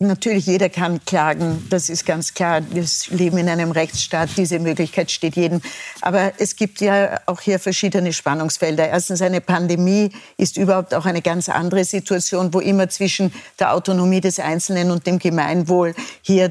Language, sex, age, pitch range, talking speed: German, female, 60-79, 175-200 Hz, 165 wpm